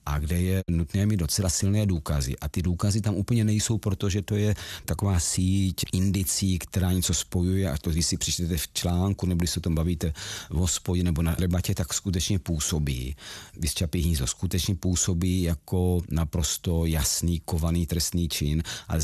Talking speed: 170 wpm